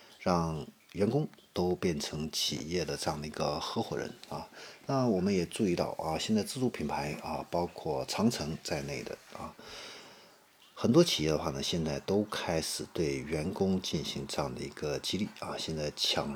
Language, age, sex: Chinese, 50-69, male